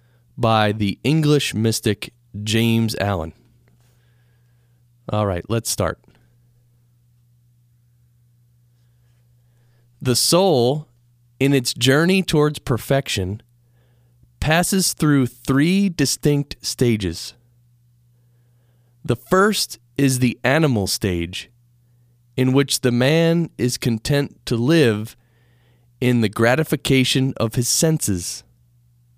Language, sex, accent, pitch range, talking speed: English, male, American, 120-130 Hz, 85 wpm